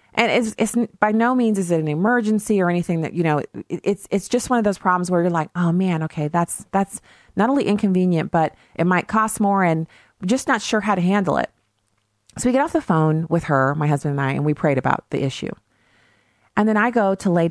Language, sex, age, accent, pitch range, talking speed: English, female, 40-59, American, 130-180 Hz, 245 wpm